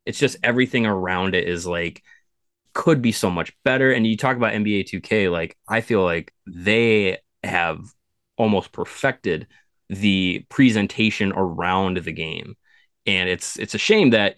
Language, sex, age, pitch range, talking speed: English, male, 20-39, 95-110 Hz, 155 wpm